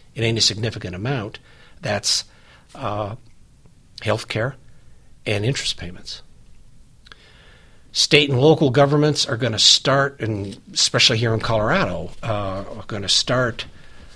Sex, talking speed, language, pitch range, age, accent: male, 120 wpm, English, 100-125 Hz, 60-79, American